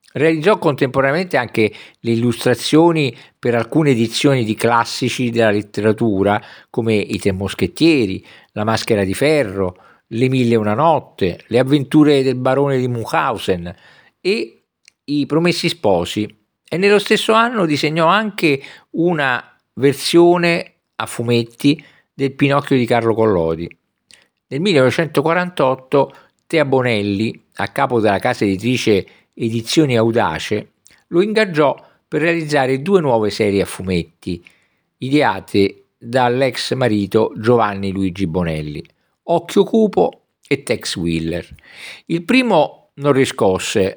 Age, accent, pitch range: 50-69, native, 105-155 Hz